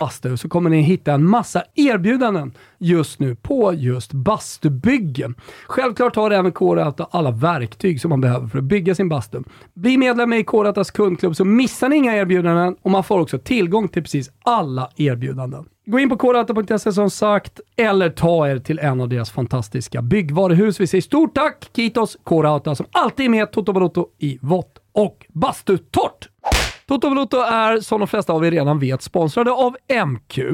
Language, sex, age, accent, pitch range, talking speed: Swedish, male, 40-59, native, 135-210 Hz, 185 wpm